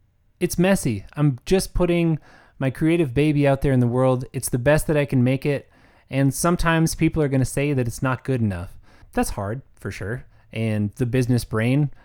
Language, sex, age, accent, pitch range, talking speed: English, male, 20-39, American, 115-160 Hz, 205 wpm